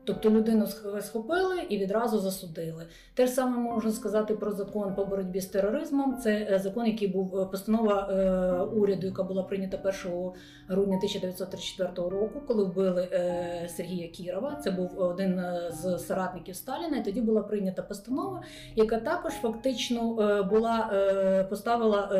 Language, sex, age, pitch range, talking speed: Ukrainian, female, 30-49, 180-220 Hz, 130 wpm